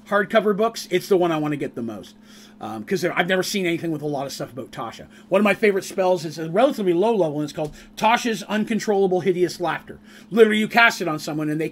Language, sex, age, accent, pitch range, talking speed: English, male, 30-49, American, 170-220 Hz, 250 wpm